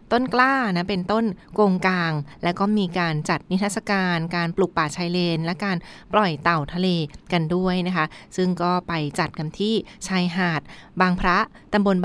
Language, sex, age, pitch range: Thai, female, 20-39, 170-205 Hz